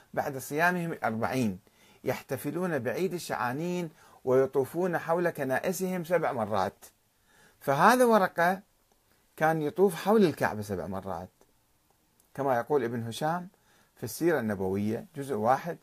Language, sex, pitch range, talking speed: Arabic, male, 115-165 Hz, 105 wpm